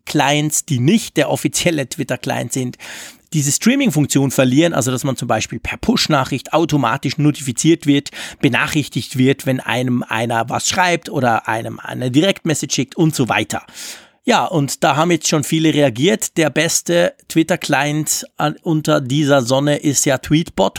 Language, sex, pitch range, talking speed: German, male, 135-180 Hz, 150 wpm